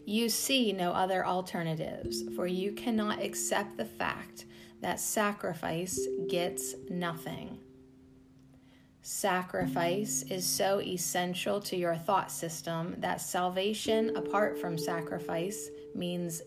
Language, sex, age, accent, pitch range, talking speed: English, female, 30-49, American, 145-200 Hz, 105 wpm